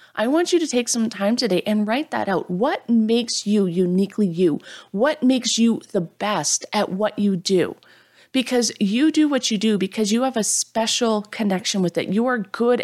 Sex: female